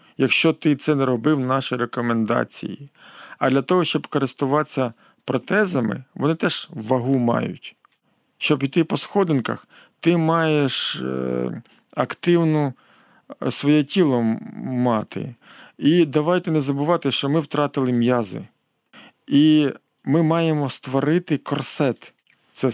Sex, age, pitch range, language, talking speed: male, 40-59, 130-160 Hz, Ukrainian, 110 wpm